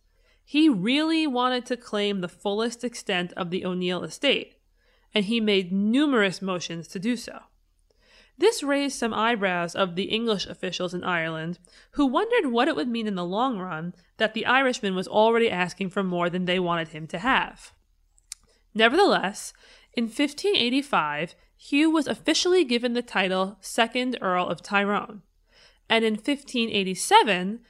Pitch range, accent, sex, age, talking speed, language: 185-250 Hz, American, female, 20-39, 150 wpm, English